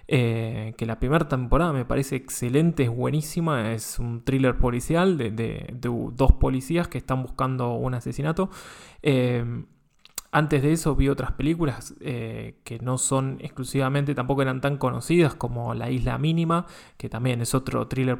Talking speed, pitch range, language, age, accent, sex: 160 wpm, 125-150 Hz, Spanish, 20-39, Argentinian, male